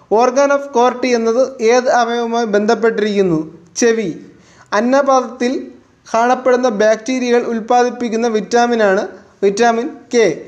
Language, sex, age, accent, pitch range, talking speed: Malayalam, male, 20-39, native, 220-245 Hz, 85 wpm